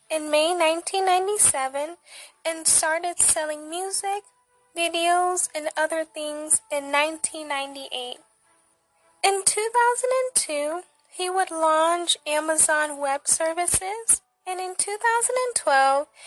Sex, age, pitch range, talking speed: female, 10-29, 295-365 Hz, 90 wpm